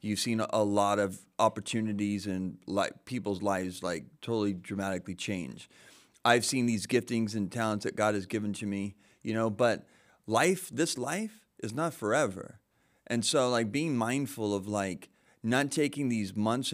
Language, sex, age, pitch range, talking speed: English, male, 30-49, 105-125 Hz, 160 wpm